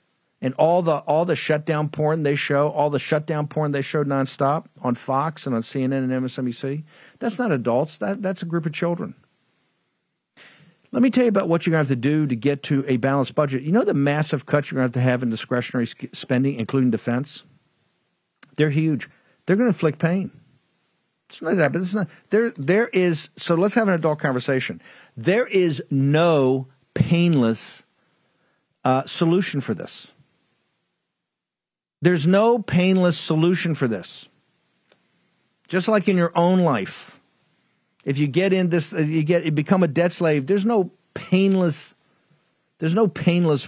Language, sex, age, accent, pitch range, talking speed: English, male, 50-69, American, 135-180 Hz, 170 wpm